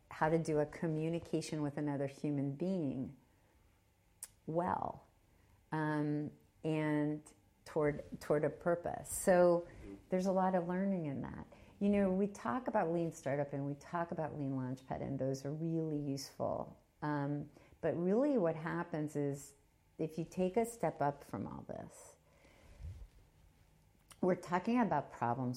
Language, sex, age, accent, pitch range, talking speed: English, female, 50-69, American, 130-165 Hz, 145 wpm